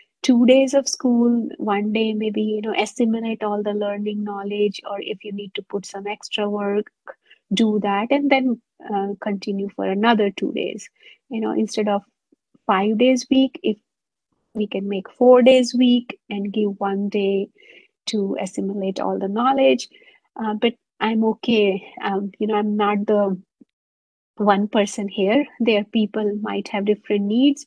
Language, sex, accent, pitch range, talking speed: English, female, Indian, 200-235 Hz, 165 wpm